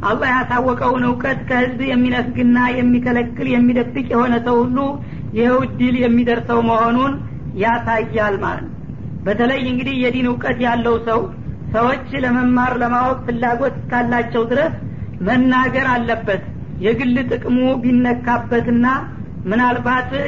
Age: 40-59